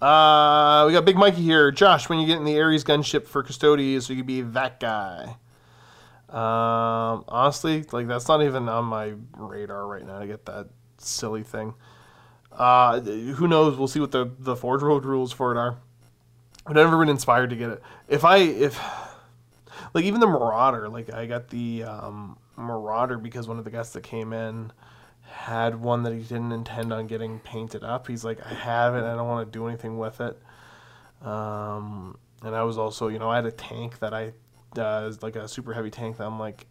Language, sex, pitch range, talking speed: English, male, 110-130 Hz, 205 wpm